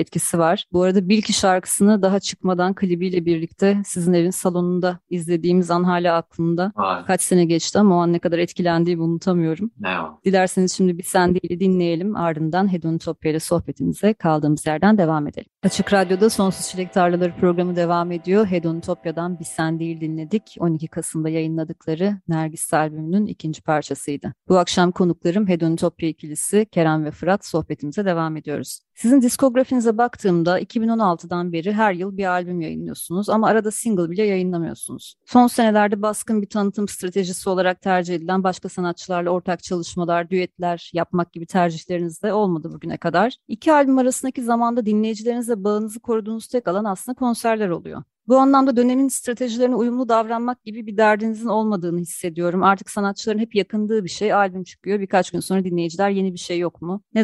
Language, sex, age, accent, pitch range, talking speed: Turkish, female, 30-49, native, 170-215 Hz, 160 wpm